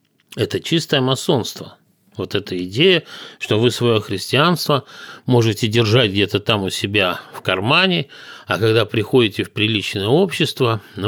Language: Russian